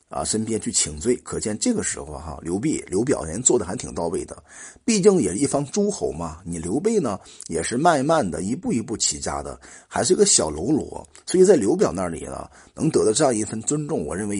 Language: Chinese